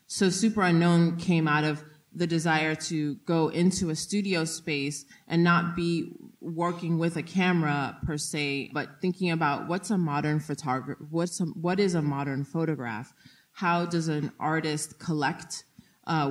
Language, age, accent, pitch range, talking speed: English, 30-49, American, 145-170 Hz, 160 wpm